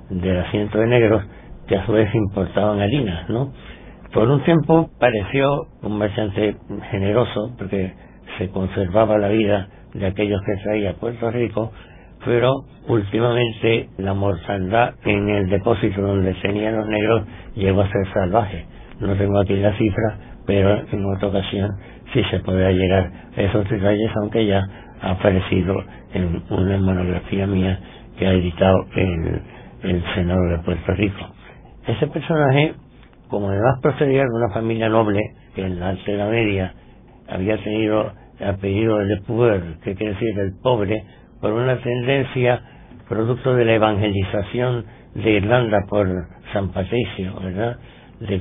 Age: 60-79